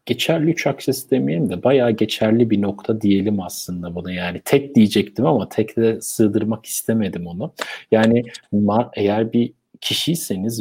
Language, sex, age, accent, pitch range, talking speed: Turkish, male, 50-69, native, 100-115 Hz, 145 wpm